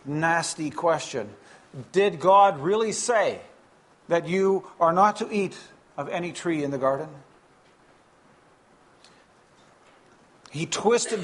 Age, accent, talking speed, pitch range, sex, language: 50-69, American, 105 wpm, 160-200 Hz, male, English